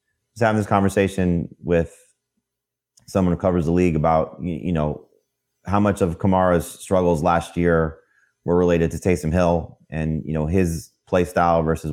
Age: 30-49